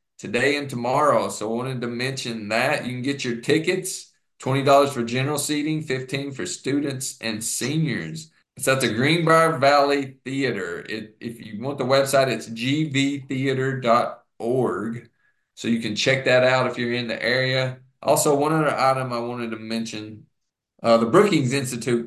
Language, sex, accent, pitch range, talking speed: English, male, American, 110-135 Hz, 165 wpm